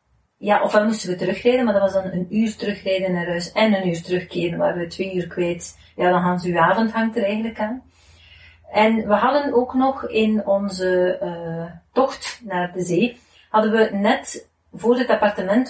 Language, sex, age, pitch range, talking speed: Dutch, female, 30-49, 180-225 Hz, 195 wpm